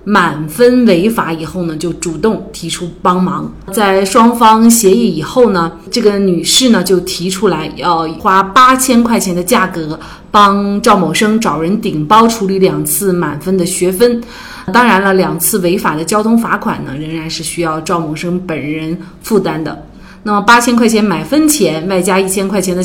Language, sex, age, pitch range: Chinese, female, 30-49, 170-230 Hz